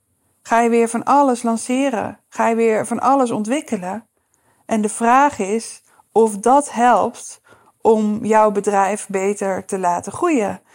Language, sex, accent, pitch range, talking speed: Dutch, female, Dutch, 195-230 Hz, 145 wpm